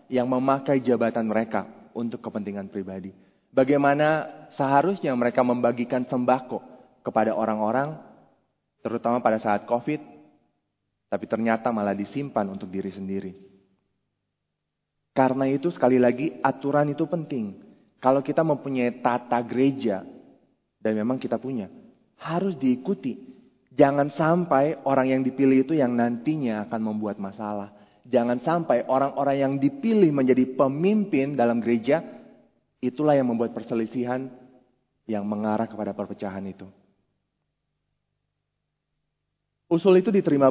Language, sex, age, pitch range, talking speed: Indonesian, male, 20-39, 115-165 Hz, 115 wpm